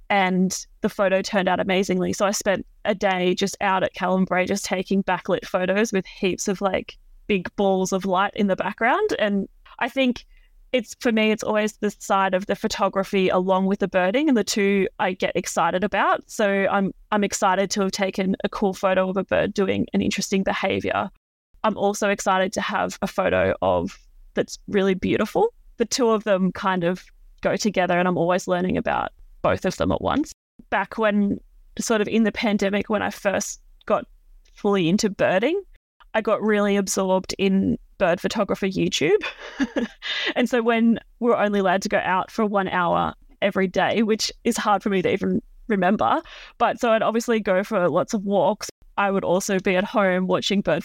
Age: 20-39